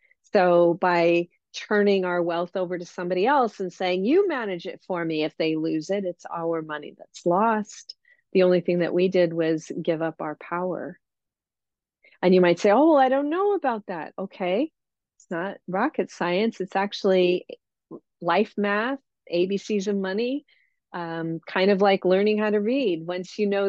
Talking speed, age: 175 wpm, 40-59